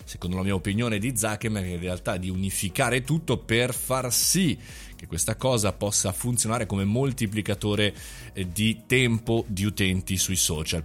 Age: 20-39